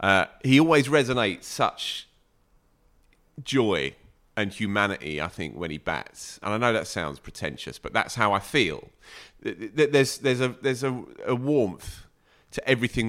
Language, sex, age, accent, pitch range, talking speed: English, male, 30-49, British, 90-130 Hz, 150 wpm